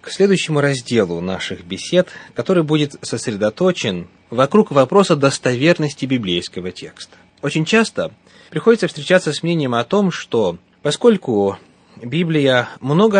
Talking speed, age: 115 wpm, 30-49